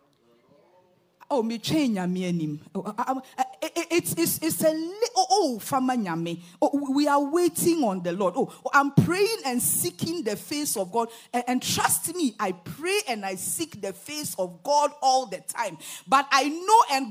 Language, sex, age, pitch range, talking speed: English, female, 40-59, 230-375 Hz, 145 wpm